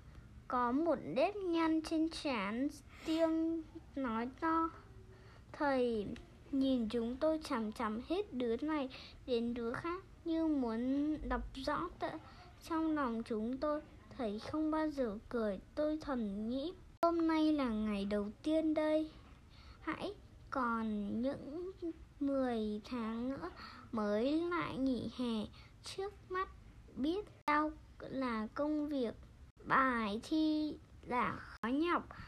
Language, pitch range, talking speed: Vietnamese, 240-315 Hz, 125 wpm